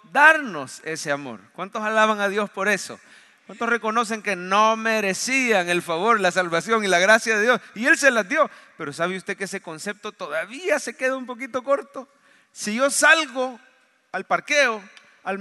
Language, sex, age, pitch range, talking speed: English, male, 40-59, 190-260 Hz, 180 wpm